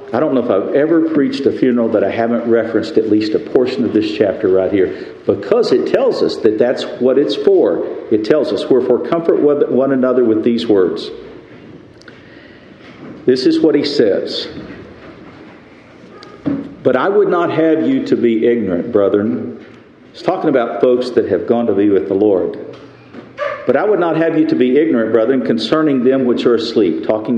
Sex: male